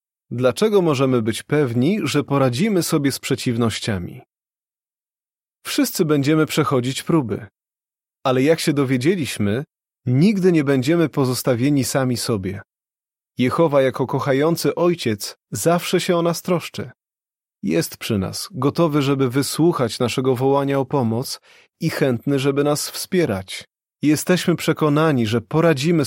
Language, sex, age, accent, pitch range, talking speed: Polish, male, 30-49, native, 125-160 Hz, 115 wpm